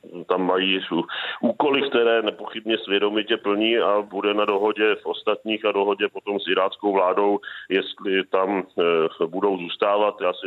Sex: male